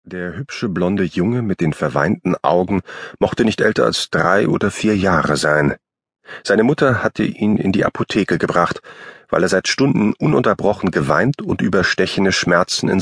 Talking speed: 165 wpm